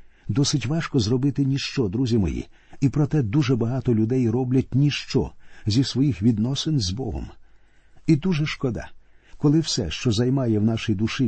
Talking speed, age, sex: 150 wpm, 50-69, male